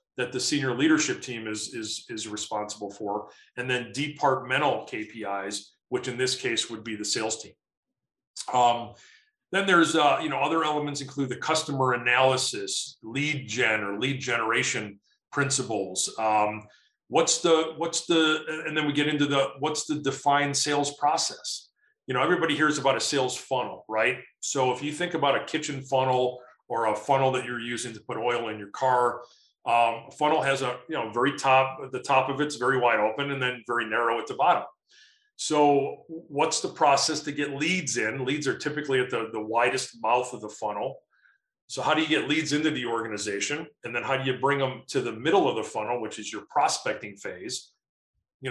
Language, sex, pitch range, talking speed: English, male, 115-145 Hz, 190 wpm